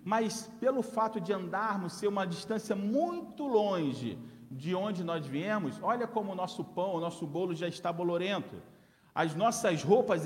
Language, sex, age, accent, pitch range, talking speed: Portuguese, male, 40-59, Brazilian, 170-225 Hz, 165 wpm